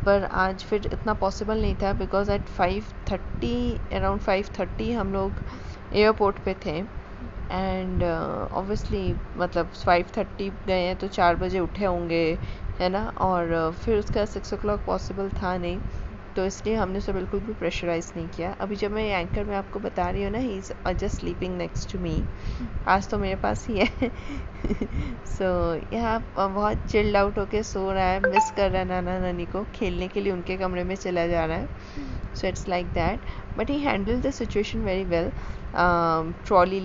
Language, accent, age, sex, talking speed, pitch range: Hindi, native, 20-39, female, 180 wpm, 170-200 Hz